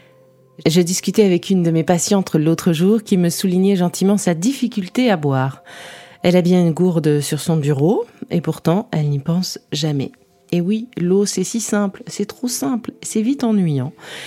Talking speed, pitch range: 180 wpm, 155-205 Hz